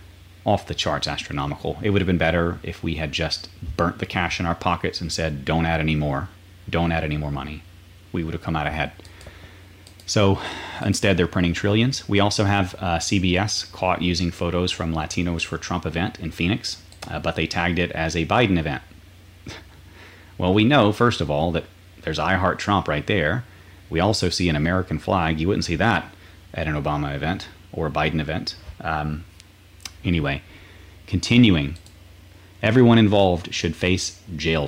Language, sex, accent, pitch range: English, male, American, 85-95 Hz